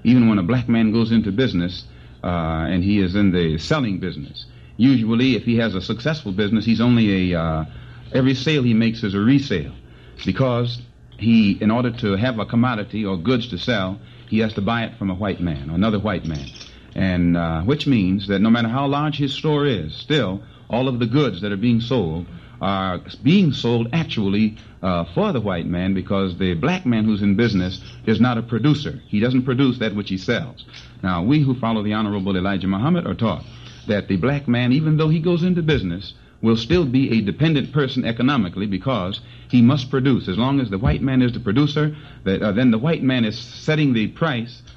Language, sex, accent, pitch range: English, male, American, 100-135 Hz